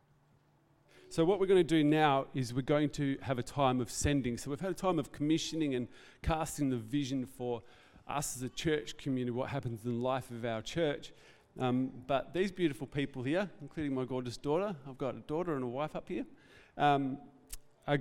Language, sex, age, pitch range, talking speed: English, male, 40-59, 130-160 Hz, 205 wpm